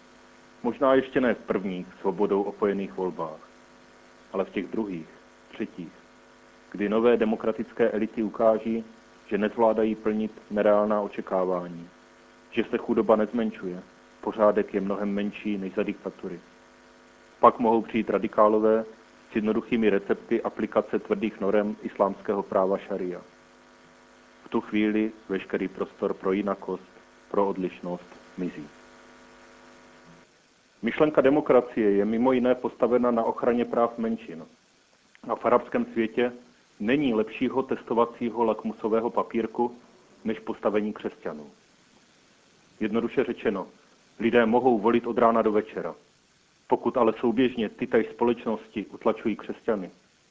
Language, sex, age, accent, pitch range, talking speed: Czech, male, 40-59, native, 105-120 Hz, 115 wpm